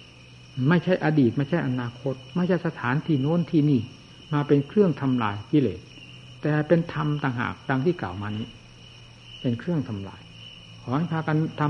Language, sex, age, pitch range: Thai, male, 60-79, 115-160 Hz